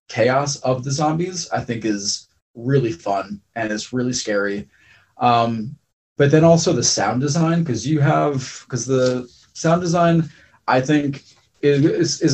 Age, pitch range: 20-39, 110-140 Hz